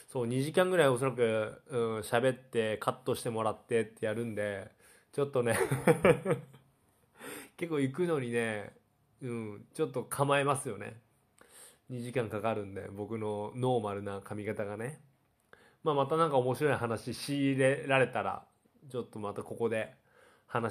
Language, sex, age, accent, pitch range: Japanese, male, 20-39, native, 115-165 Hz